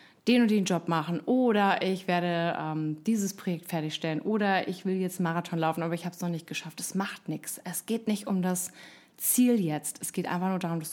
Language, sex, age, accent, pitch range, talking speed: German, female, 30-49, German, 180-230 Hz, 225 wpm